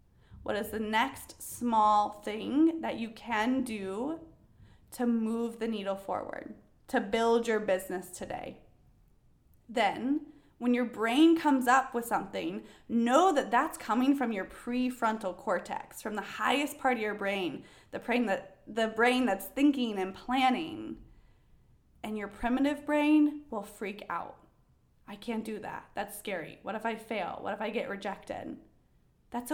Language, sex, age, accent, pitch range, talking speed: English, female, 20-39, American, 210-265 Hz, 150 wpm